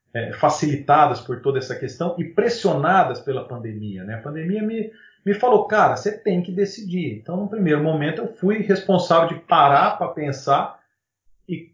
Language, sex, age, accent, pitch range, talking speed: Portuguese, male, 40-59, Brazilian, 115-175 Hz, 165 wpm